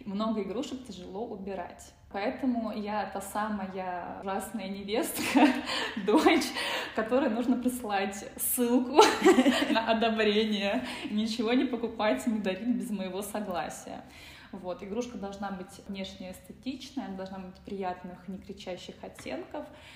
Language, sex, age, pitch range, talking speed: Russian, female, 20-39, 195-240 Hz, 110 wpm